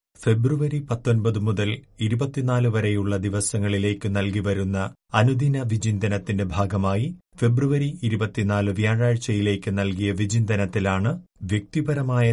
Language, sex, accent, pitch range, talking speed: Malayalam, male, native, 105-125 Hz, 85 wpm